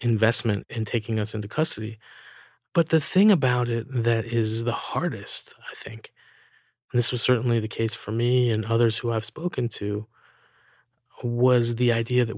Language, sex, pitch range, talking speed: English, male, 110-125 Hz, 170 wpm